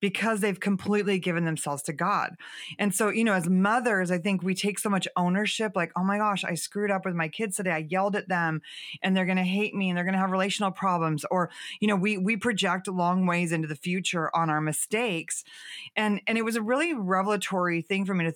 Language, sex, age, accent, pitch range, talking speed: English, female, 30-49, American, 165-200 Hz, 240 wpm